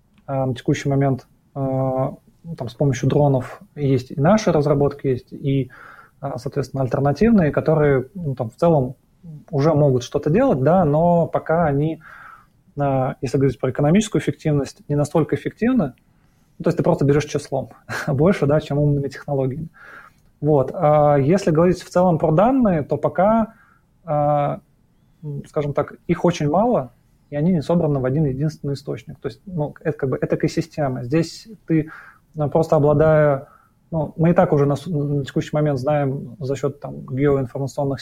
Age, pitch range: 20-39, 140-160 Hz